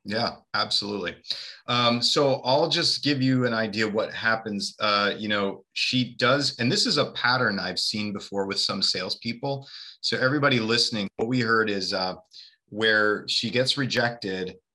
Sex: male